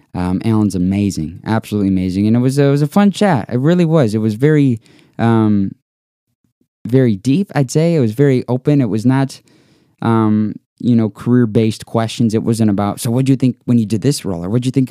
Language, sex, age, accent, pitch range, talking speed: English, male, 20-39, American, 100-135 Hz, 225 wpm